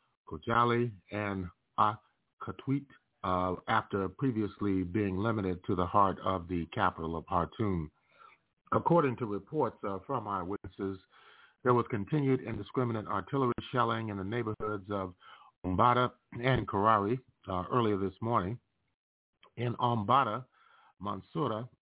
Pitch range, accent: 95-120 Hz, American